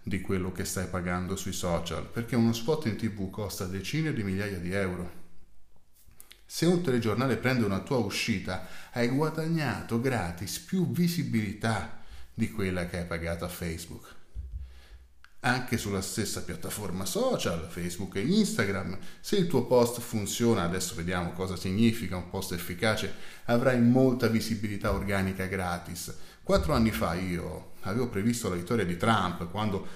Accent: native